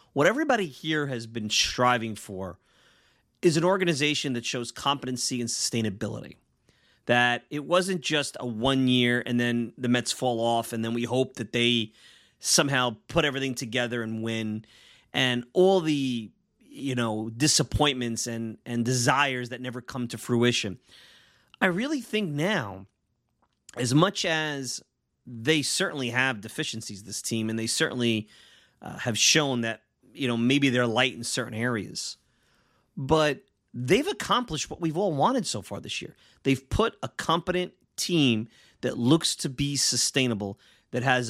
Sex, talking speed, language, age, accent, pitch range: male, 155 wpm, English, 30-49, American, 120-155 Hz